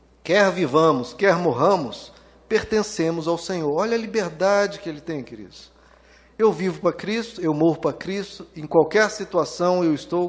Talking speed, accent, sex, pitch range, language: 155 wpm, Brazilian, male, 160-215 Hz, Portuguese